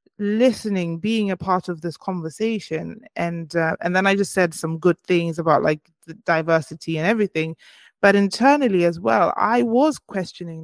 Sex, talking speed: female, 165 wpm